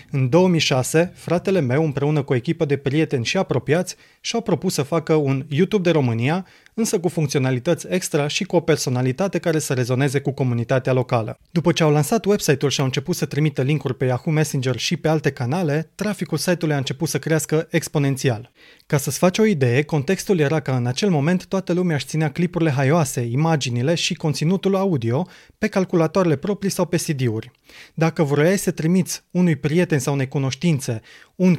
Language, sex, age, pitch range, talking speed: Romanian, male, 30-49, 145-180 Hz, 180 wpm